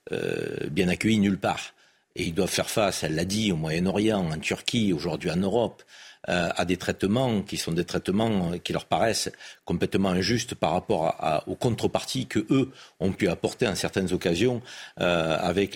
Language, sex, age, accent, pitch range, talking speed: French, male, 50-69, French, 95-125 Hz, 185 wpm